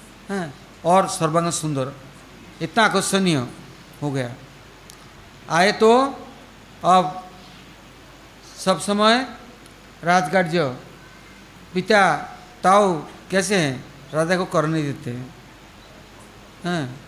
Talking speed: 85 wpm